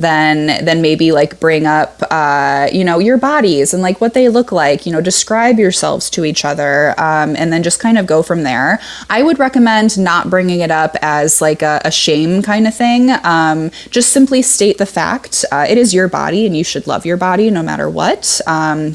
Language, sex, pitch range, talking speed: English, female, 155-200 Hz, 220 wpm